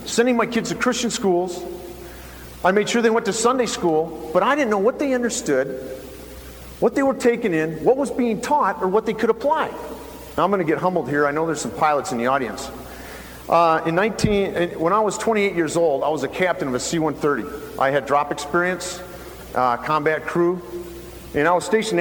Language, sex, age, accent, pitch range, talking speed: English, male, 50-69, American, 155-205 Hz, 205 wpm